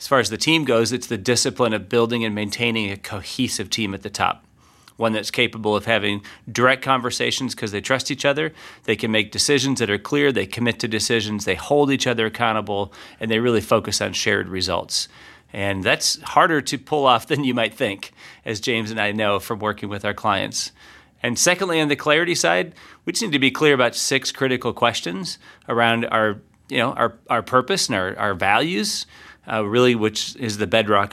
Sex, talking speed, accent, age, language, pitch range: male, 200 wpm, American, 30-49, English, 105-125 Hz